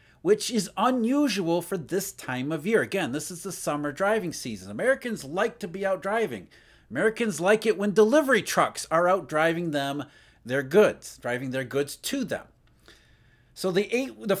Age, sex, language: 40-59, male, English